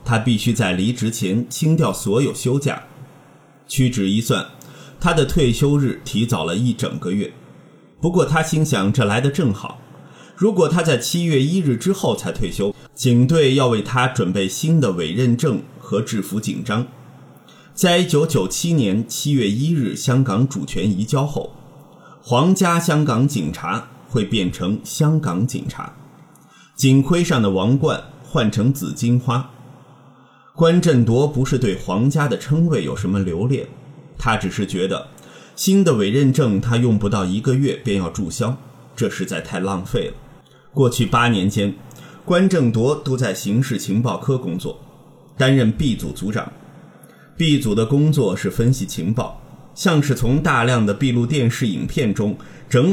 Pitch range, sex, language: 120-155 Hz, male, Chinese